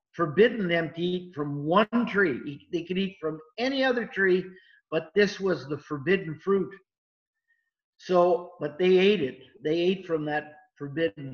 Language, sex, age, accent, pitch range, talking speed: English, male, 50-69, American, 155-210 Hz, 160 wpm